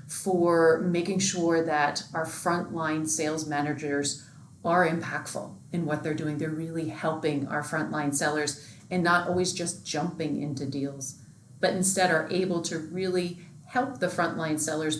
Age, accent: 40-59, American